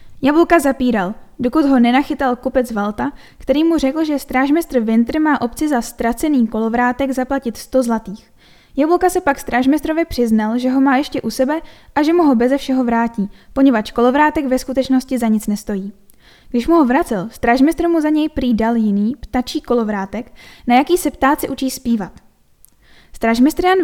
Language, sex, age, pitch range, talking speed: Czech, female, 10-29, 230-285 Hz, 165 wpm